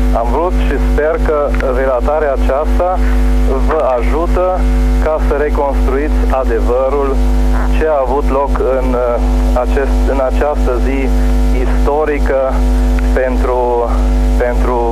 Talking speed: 95 wpm